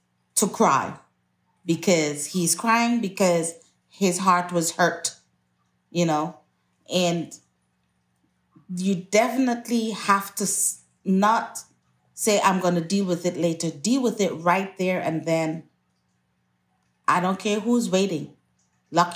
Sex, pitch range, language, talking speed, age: female, 150-205 Hz, English, 120 wpm, 30-49